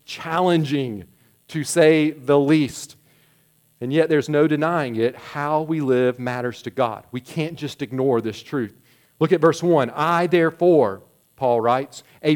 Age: 40-59